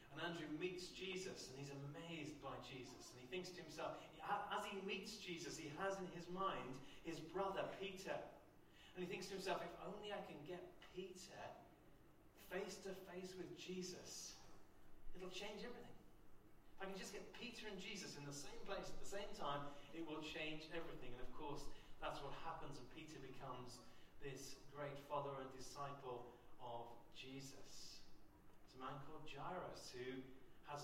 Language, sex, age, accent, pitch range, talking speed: English, male, 30-49, British, 140-180 Hz, 165 wpm